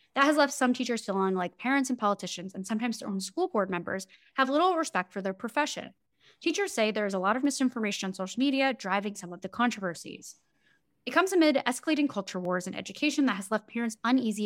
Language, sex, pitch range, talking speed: English, female, 195-265 Hz, 215 wpm